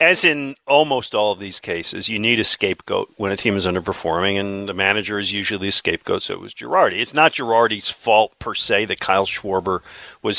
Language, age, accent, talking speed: English, 50-69, American, 215 wpm